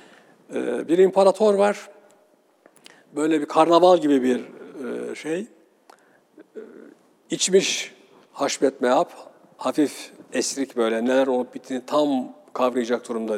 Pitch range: 135-195 Hz